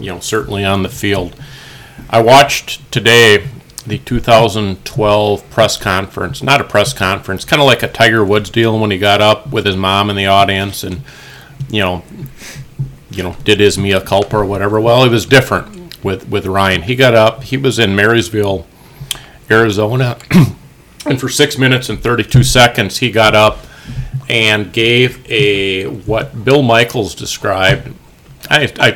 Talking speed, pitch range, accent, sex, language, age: 165 wpm, 100-130 Hz, American, male, English, 40-59